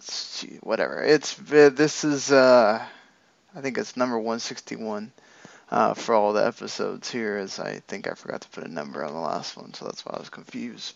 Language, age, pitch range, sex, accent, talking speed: English, 20-39, 120-150 Hz, male, American, 205 wpm